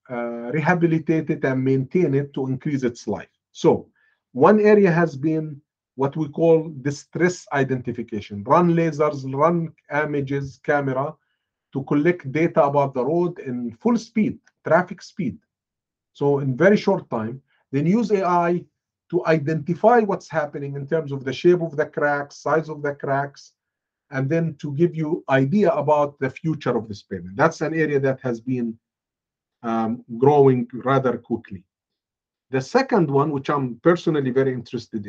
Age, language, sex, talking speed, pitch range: 50-69, English, male, 155 wpm, 125-165 Hz